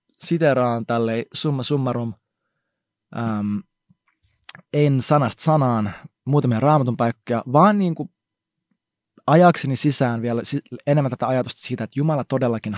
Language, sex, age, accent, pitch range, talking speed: Finnish, male, 20-39, native, 115-170 Hz, 115 wpm